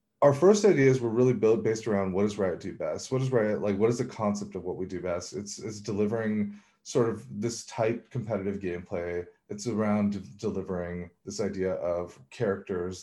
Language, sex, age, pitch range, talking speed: English, male, 30-49, 100-135 Hz, 200 wpm